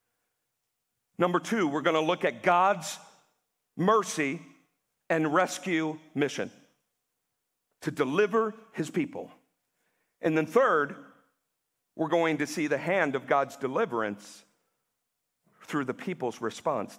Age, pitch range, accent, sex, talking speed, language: 50-69, 155-240 Hz, American, male, 115 wpm, English